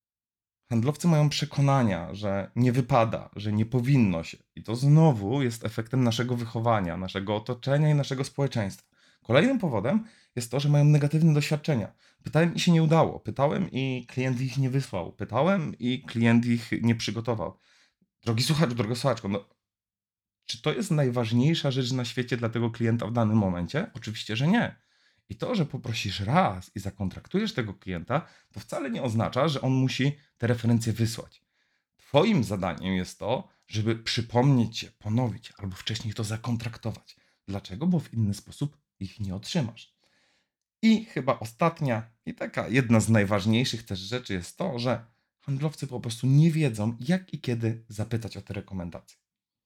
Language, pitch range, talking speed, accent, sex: Polish, 105-140 Hz, 160 wpm, native, male